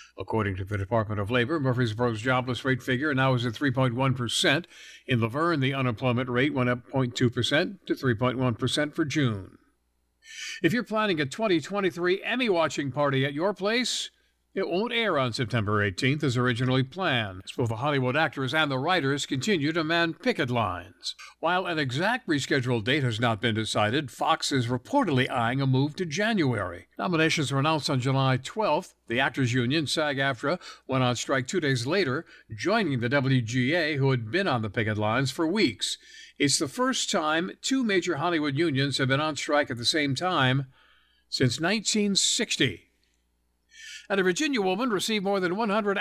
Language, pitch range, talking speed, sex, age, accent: English, 125-165 Hz, 170 wpm, male, 60-79, American